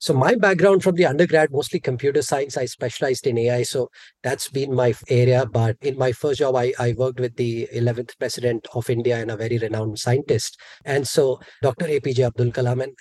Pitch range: 115-135 Hz